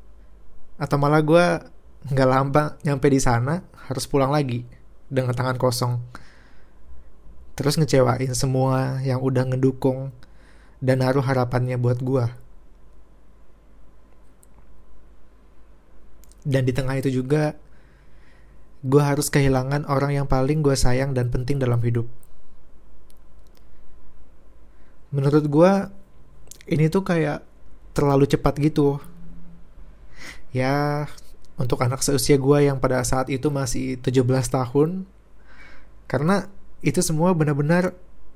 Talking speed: 105 wpm